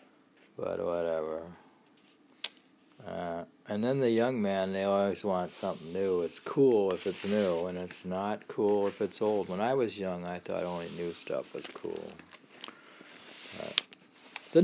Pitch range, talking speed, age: 100-170 Hz, 150 wpm, 50-69